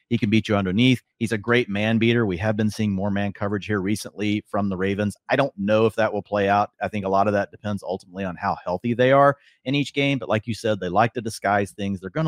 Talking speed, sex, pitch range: 280 wpm, male, 95-115 Hz